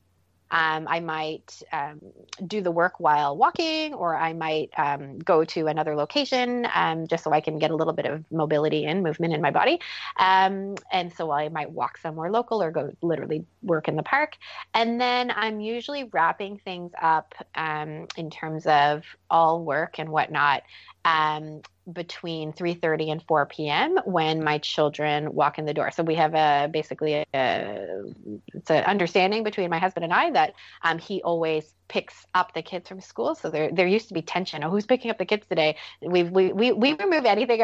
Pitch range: 155-210 Hz